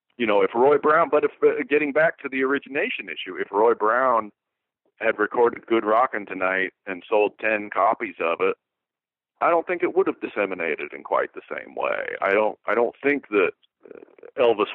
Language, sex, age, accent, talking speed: English, male, 50-69, American, 190 wpm